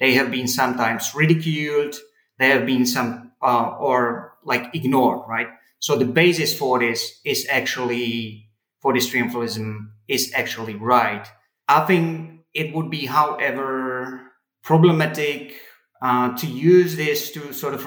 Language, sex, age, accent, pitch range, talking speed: English, male, 30-49, Finnish, 120-150 Hz, 140 wpm